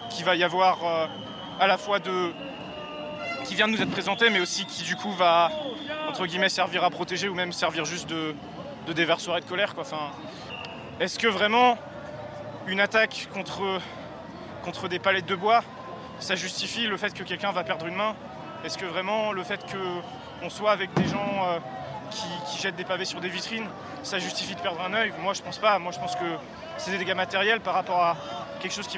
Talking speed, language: 210 wpm, French